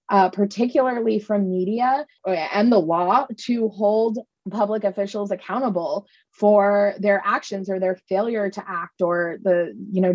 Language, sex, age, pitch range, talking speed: English, female, 20-39, 185-225 Hz, 140 wpm